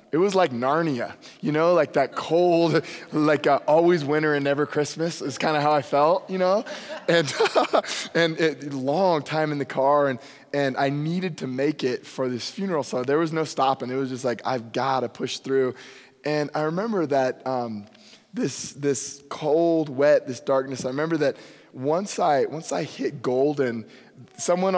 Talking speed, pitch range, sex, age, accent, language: 185 wpm, 135-160 Hz, male, 20-39, American, English